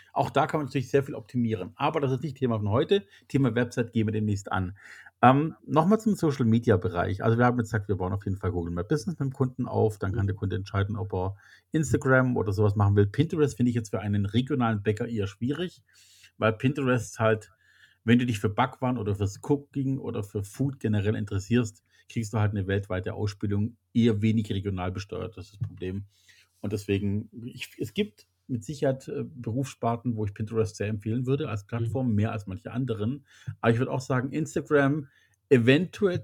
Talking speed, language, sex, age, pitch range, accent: 200 wpm, German, male, 40-59, 105-130 Hz, German